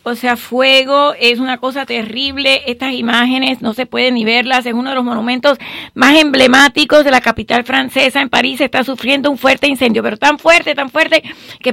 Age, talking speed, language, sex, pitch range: 40-59, 200 wpm, English, female, 240-285 Hz